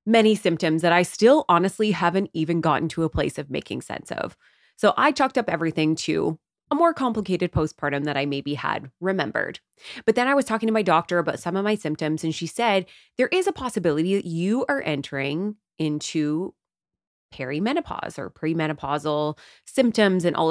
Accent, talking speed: American, 180 wpm